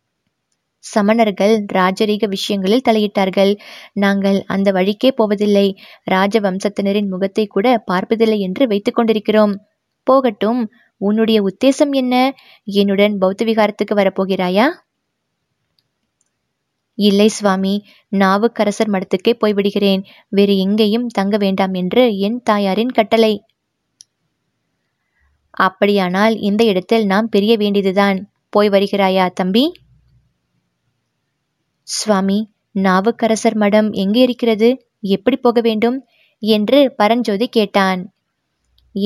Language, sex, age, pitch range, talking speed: Tamil, female, 20-39, 195-230 Hz, 90 wpm